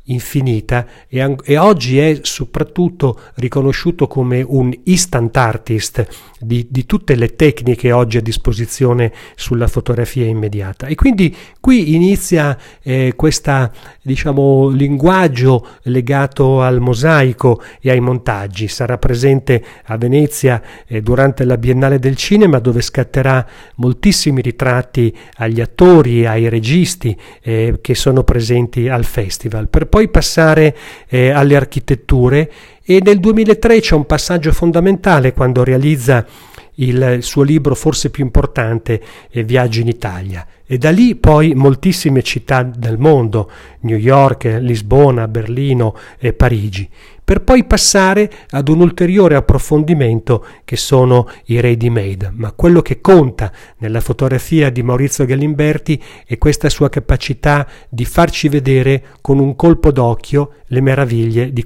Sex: male